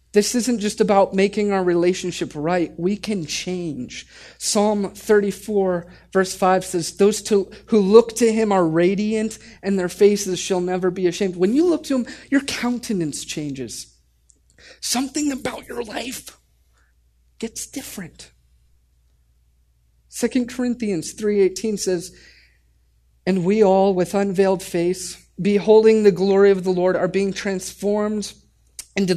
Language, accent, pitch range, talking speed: English, American, 145-205 Hz, 130 wpm